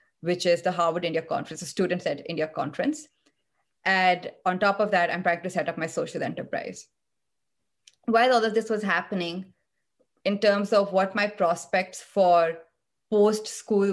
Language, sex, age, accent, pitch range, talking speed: English, female, 20-39, Indian, 170-205 Hz, 165 wpm